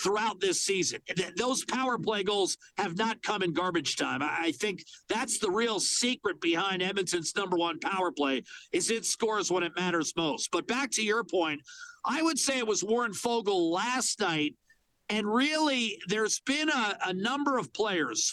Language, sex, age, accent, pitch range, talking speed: English, male, 50-69, American, 200-255 Hz, 180 wpm